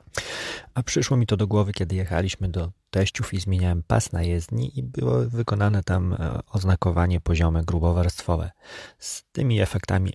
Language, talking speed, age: Polish, 150 wpm, 30-49